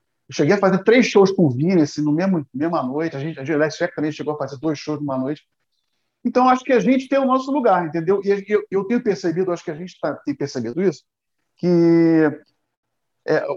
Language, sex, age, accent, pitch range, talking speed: Portuguese, male, 50-69, Brazilian, 160-205 Hz, 215 wpm